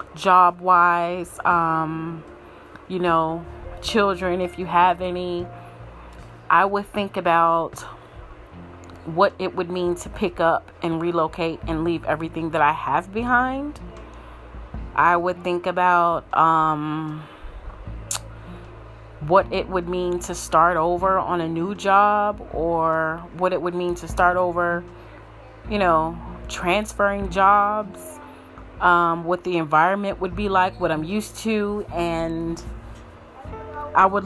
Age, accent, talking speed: 30-49, American, 125 wpm